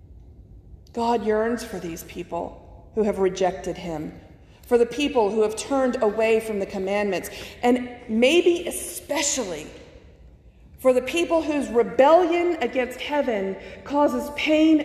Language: English